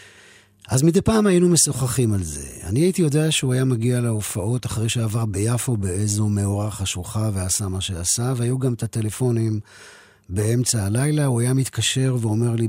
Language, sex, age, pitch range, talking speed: Hebrew, male, 40-59, 105-130 Hz, 160 wpm